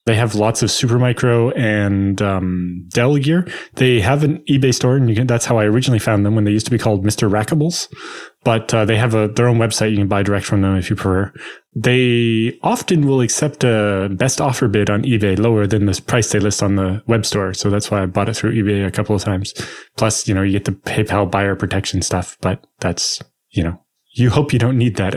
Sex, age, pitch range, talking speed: male, 20-39, 105-125 Hz, 240 wpm